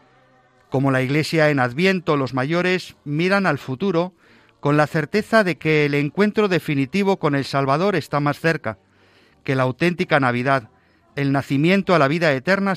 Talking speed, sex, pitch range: 160 wpm, male, 120-160 Hz